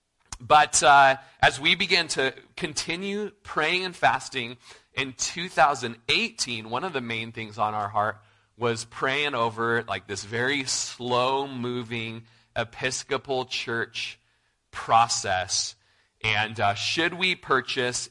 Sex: male